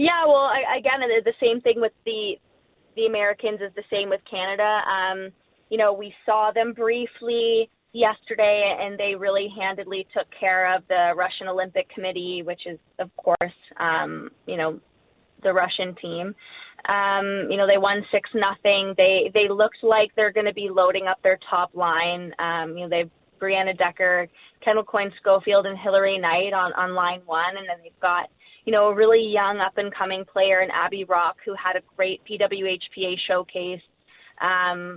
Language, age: English, 20-39